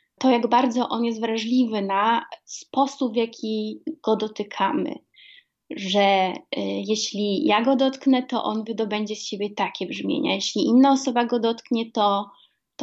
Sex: female